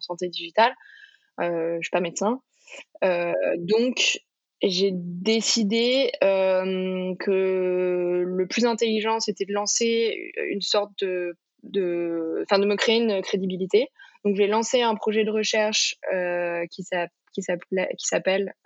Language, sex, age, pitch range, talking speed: French, female, 20-39, 185-220 Hz, 135 wpm